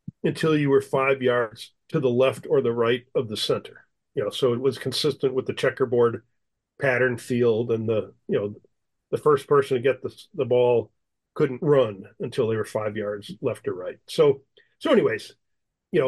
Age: 40-59